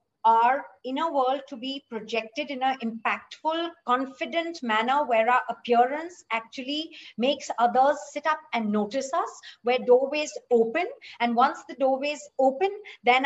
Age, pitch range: 50-69, 230-295 Hz